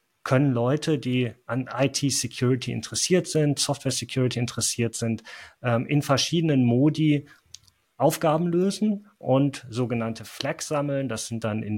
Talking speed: 115 wpm